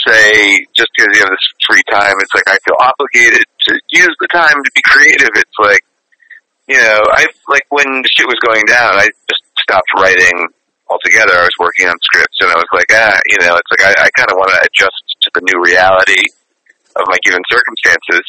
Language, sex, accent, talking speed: English, male, American, 215 wpm